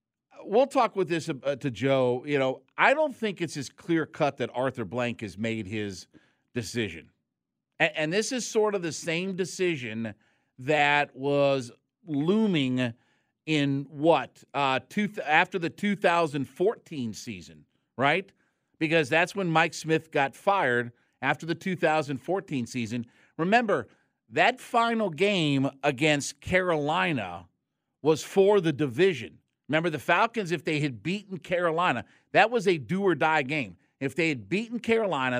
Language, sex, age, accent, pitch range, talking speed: English, male, 50-69, American, 125-175 Hz, 140 wpm